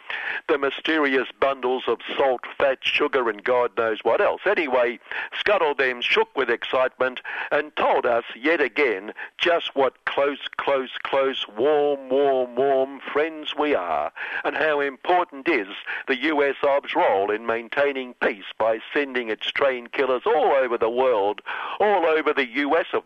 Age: 60-79